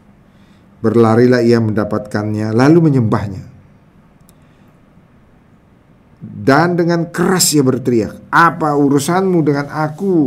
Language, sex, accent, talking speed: English, male, Indonesian, 80 wpm